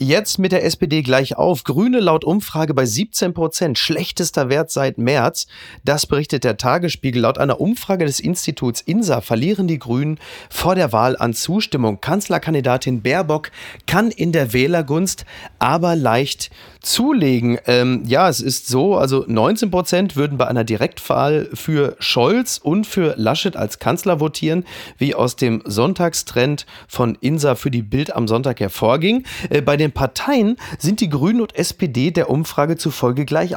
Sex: male